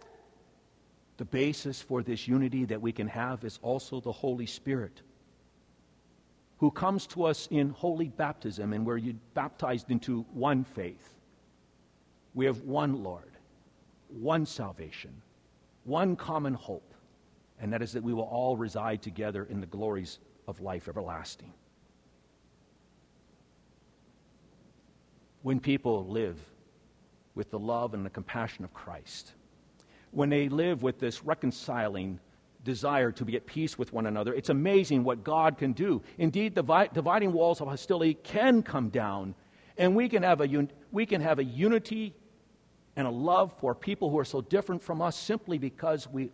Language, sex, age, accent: English, male, 50-69, American